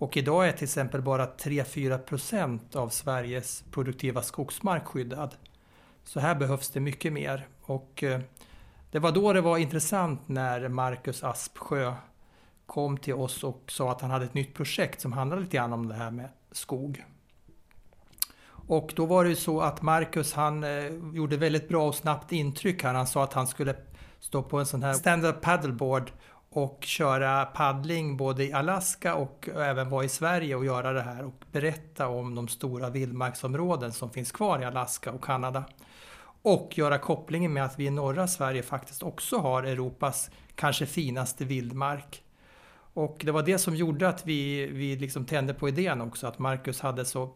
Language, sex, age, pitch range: English, male, 60-79, 130-155 Hz